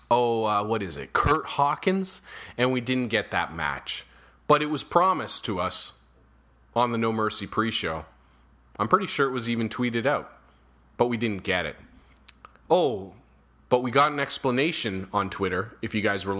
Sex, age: male, 30-49